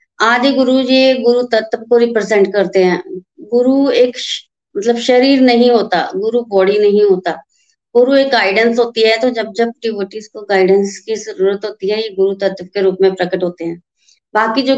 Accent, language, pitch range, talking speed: native, Hindi, 195-245 Hz, 180 wpm